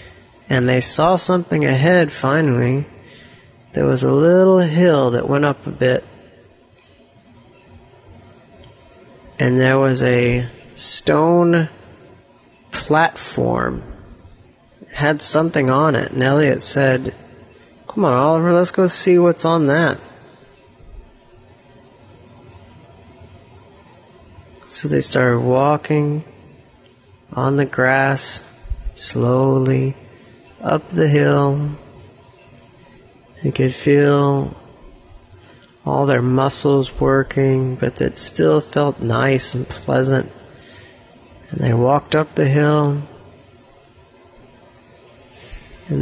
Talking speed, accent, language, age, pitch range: 95 wpm, American, English, 30-49, 120-140 Hz